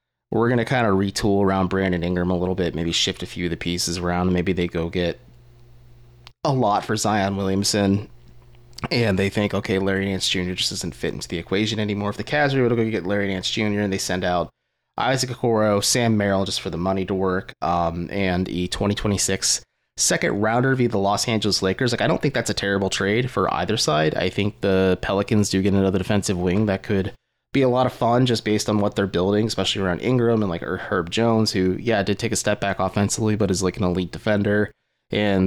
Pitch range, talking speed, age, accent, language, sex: 95-115 Hz, 225 wpm, 30-49, American, English, male